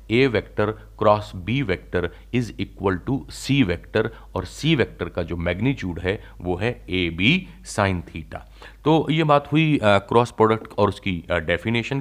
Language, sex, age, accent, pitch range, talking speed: Hindi, male, 40-59, native, 95-125 Hz, 165 wpm